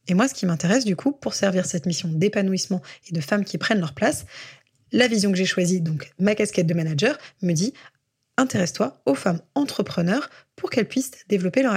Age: 20-39